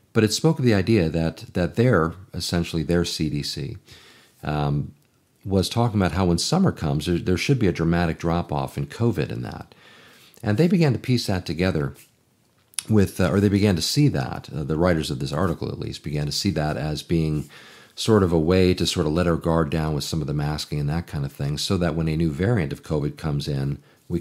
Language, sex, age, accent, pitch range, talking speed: English, male, 40-59, American, 75-100 Hz, 230 wpm